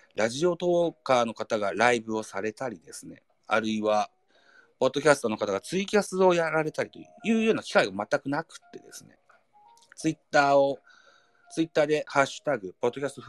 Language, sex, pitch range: Japanese, male, 110-185 Hz